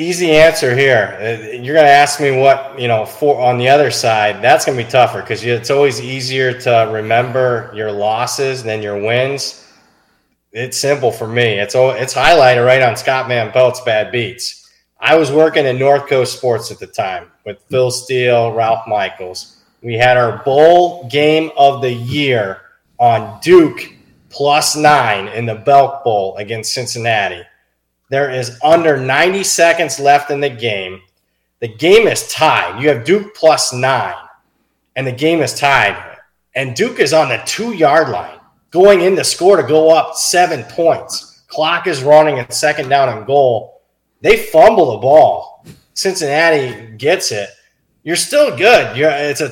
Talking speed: 165 wpm